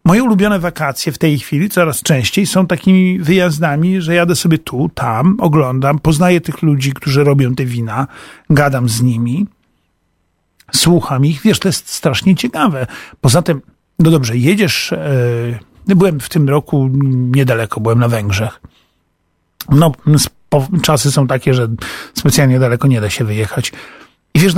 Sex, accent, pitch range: male, native, 125-170 Hz